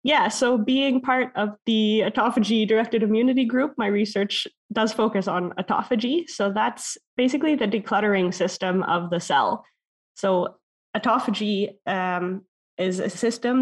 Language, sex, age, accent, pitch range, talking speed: English, female, 20-39, American, 180-230 Hz, 135 wpm